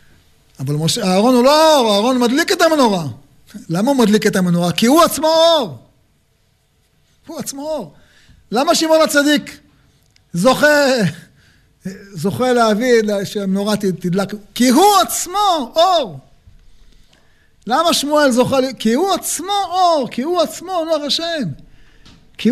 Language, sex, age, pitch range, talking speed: Hebrew, male, 50-69, 180-275 Hz, 130 wpm